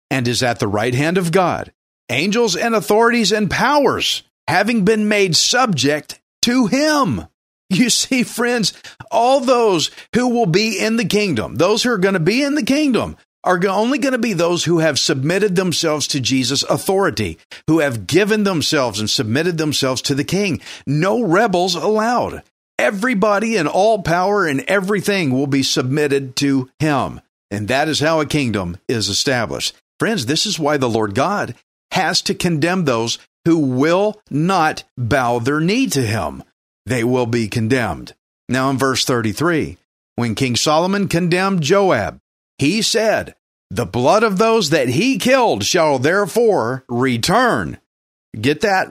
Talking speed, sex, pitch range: 160 wpm, male, 135-210 Hz